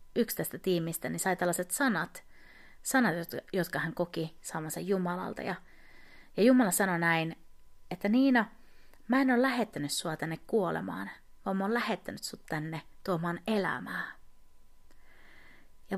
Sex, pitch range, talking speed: female, 165-240 Hz, 135 wpm